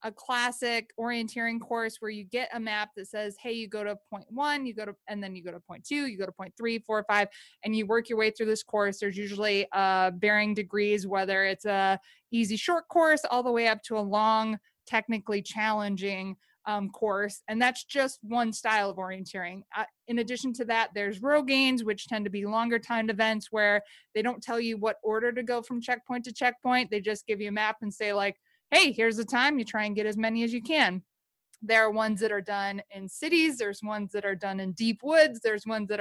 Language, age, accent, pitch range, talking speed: English, 20-39, American, 205-235 Hz, 235 wpm